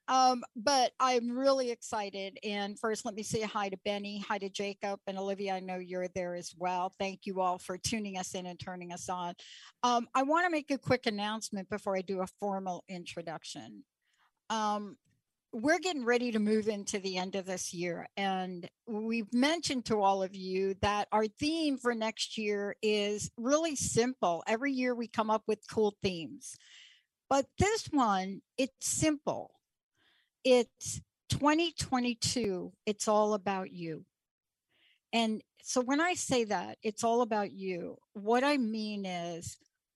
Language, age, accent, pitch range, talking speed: English, 60-79, American, 190-245 Hz, 165 wpm